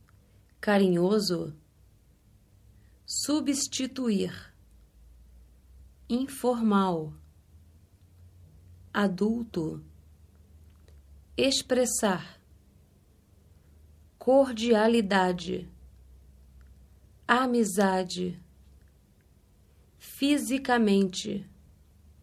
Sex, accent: female, Brazilian